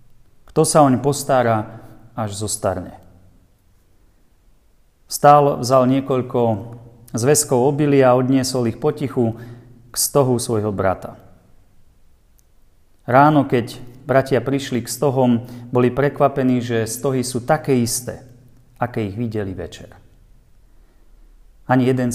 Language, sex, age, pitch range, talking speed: Slovak, male, 40-59, 105-130 Hz, 105 wpm